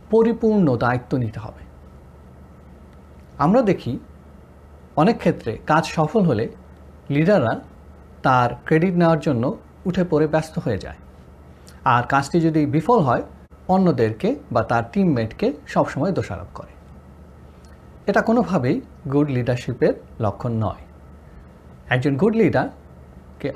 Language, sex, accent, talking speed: Bengali, male, native, 105 wpm